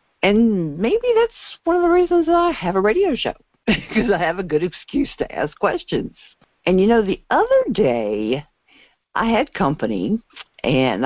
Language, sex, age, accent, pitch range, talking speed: English, female, 50-69, American, 160-230 Hz, 175 wpm